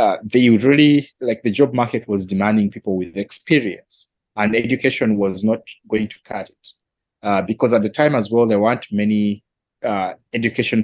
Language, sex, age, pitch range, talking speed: English, male, 30-49, 100-120 Hz, 185 wpm